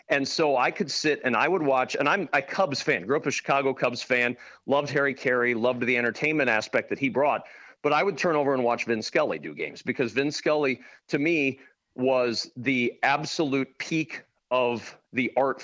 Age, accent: 40-59, American